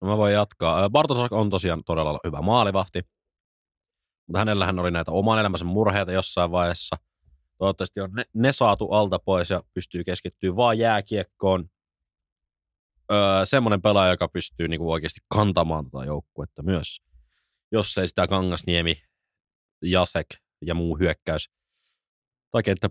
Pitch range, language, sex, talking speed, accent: 85-105 Hz, Finnish, male, 140 wpm, native